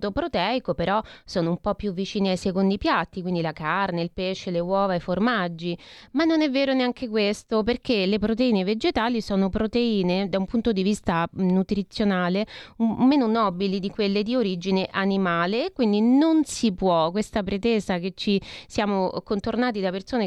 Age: 30-49